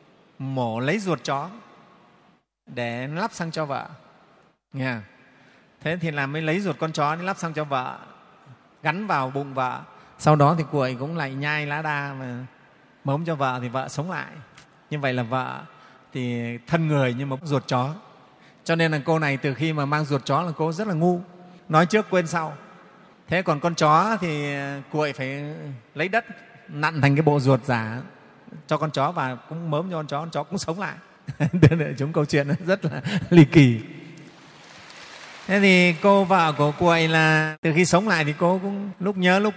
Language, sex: Vietnamese, male